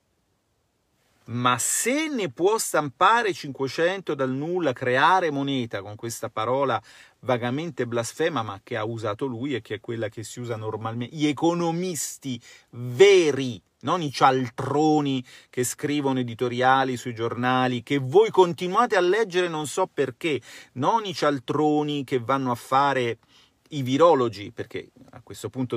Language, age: Italian, 40-59